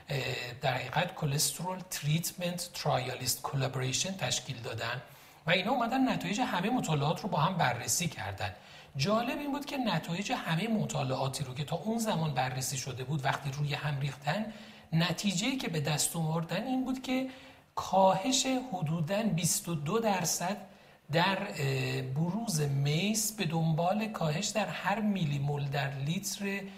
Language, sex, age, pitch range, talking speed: Persian, male, 40-59, 140-195 Hz, 140 wpm